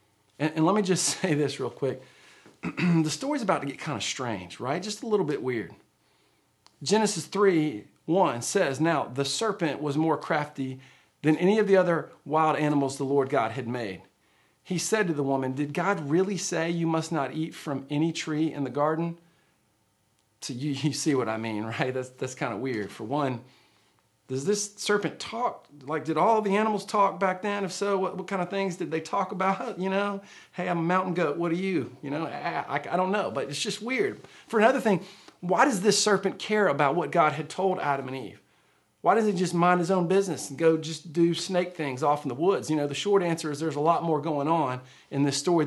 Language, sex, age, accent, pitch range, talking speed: English, male, 40-59, American, 140-190 Hz, 225 wpm